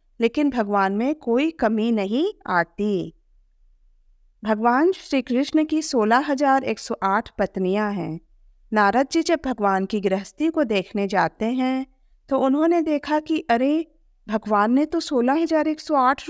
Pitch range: 210-300 Hz